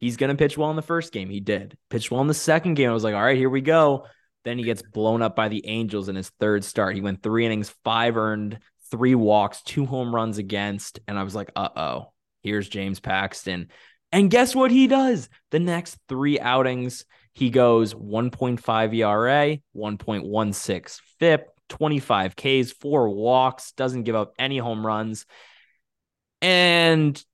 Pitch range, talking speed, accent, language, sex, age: 105-150 Hz, 185 wpm, American, English, male, 20-39